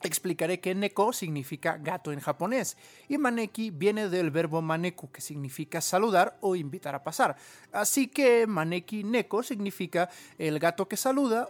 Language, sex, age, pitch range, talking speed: Spanish, male, 30-49, 150-195 Hz, 155 wpm